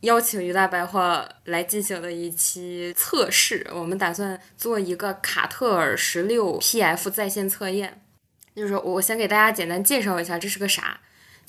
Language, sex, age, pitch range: Chinese, female, 10-29, 180-230 Hz